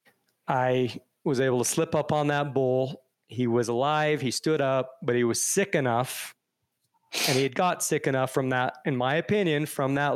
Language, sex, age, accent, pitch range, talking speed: English, male, 30-49, American, 130-150 Hz, 195 wpm